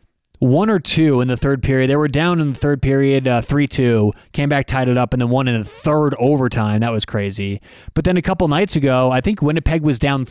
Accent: American